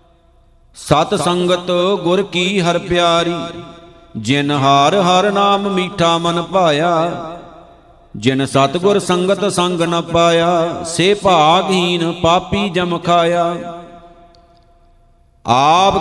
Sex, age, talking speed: male, 50-69, 95 wpm